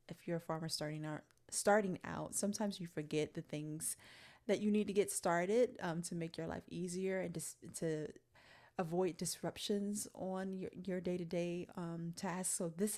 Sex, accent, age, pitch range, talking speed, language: female, American, 20-39, 165-195 Hz, 175 wpm, English